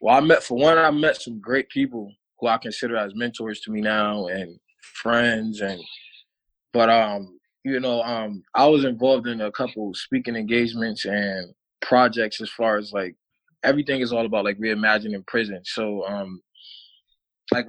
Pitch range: 110-130 Hz